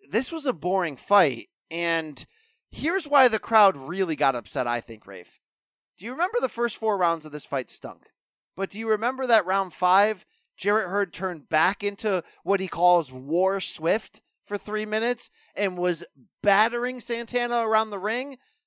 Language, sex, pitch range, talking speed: English, male, 175-260 Hz, 175 wpm